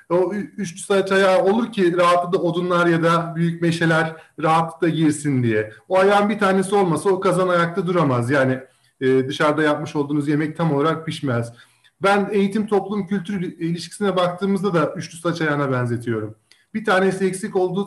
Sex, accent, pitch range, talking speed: male, native, 145-200 Hz, 155 wpm